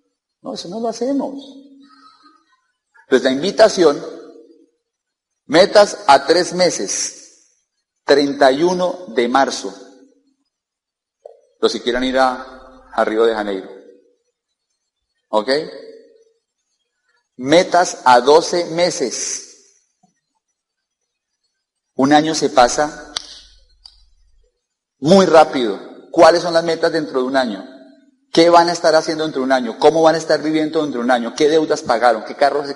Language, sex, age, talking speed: Spanish, male, 40-59, 125 wpm